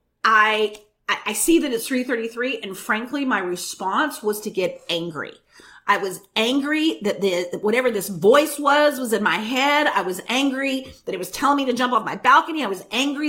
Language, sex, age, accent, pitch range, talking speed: English, female, 40-59, American, 200-290 Hz, 195 wpm